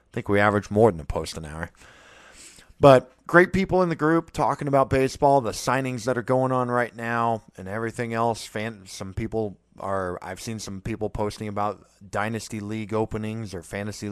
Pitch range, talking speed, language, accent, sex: 105-155 Hz, 185 wpm, English, American, male